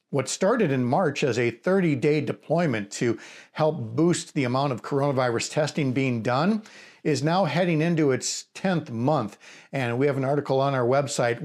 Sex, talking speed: male, 175 wpm